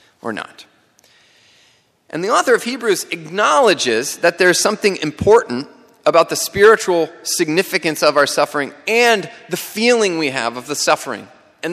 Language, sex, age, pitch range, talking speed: English, male, 30-49, 145-195 Hz, 150 wpm